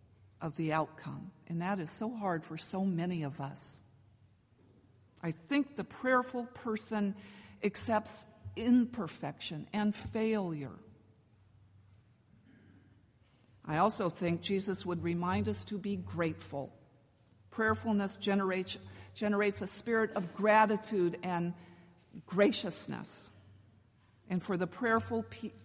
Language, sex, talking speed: English, female, 110 wpm